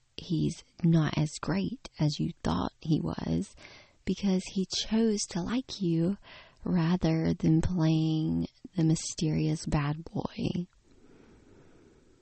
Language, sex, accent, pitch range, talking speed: English, female, American, 145-190 Hz, 110 wpm